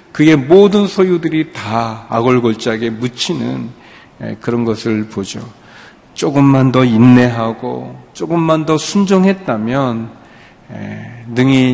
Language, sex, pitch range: Korean, male, 115-150 Hz